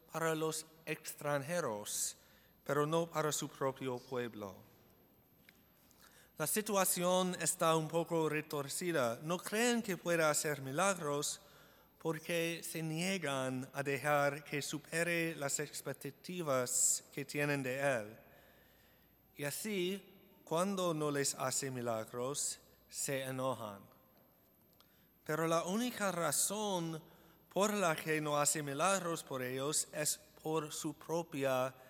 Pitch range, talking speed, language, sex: 135-165 Hz, 110 wpm, Spanish, male